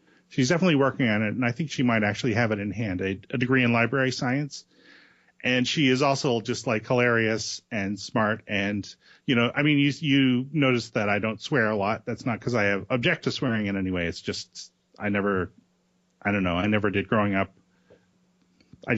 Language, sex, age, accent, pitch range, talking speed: English, male, 30-49, American, 105-135 Hz, 220 wpm